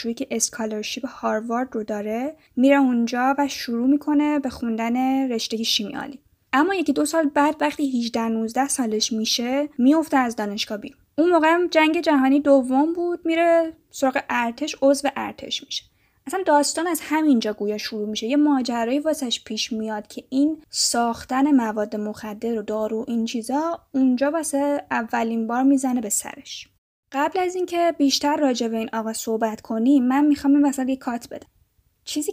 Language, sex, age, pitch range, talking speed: Persian, female, 10-29, 230-290 Hz, 160 wpm